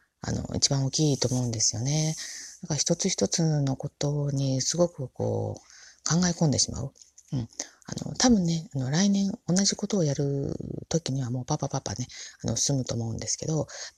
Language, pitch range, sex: Japanese, 115-155 Hz, female